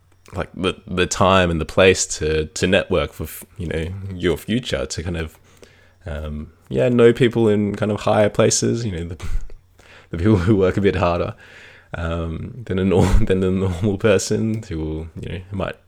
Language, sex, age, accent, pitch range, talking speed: English, male, 20-39, Australian, 80-105 Hz, 210 wpm